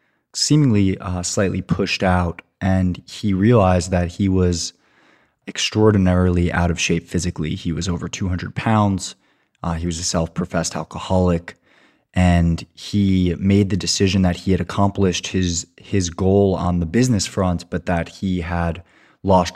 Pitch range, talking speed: 85-95 Hz, 145 wpm